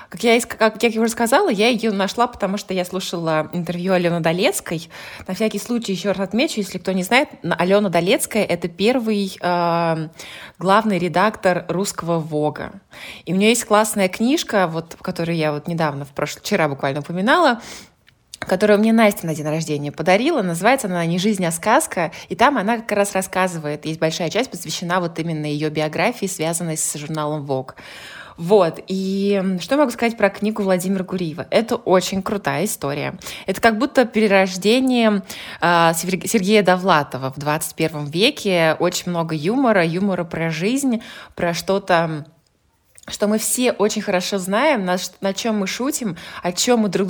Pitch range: 170-215 Hz